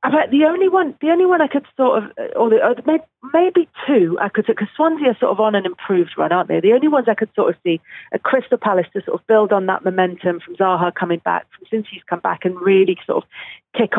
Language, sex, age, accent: English, female, 40-59, British